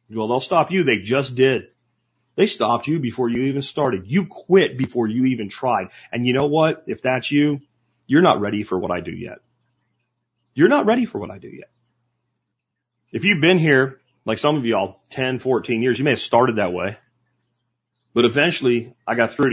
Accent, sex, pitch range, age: American, male, 120-160 Hz, 30-49